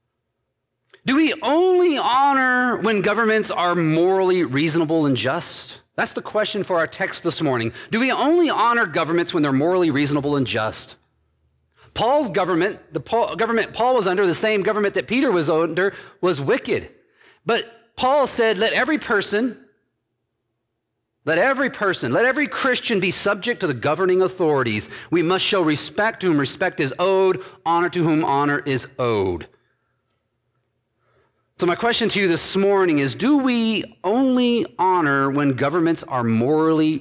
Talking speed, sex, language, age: 155 wpm, male, English, 40-59